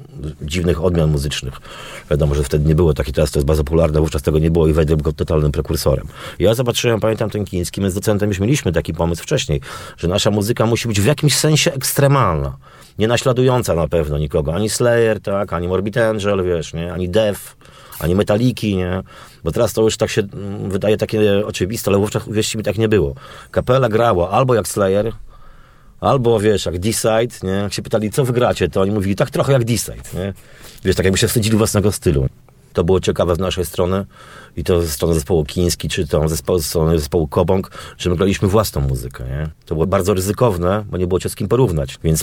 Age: 30-49